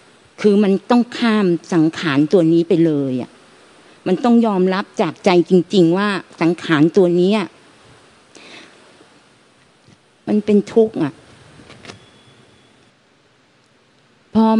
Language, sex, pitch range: Thai, female, 165-210 Hz